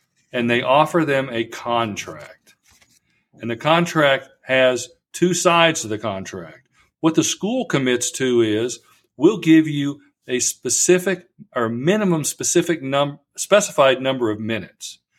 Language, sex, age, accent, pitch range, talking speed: English, male, 50-69, American, 120-155 Hz, 135 wpm